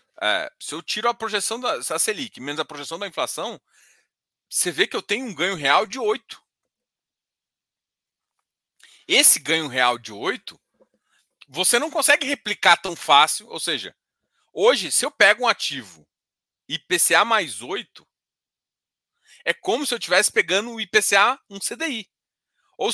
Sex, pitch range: male, 170-250 Hz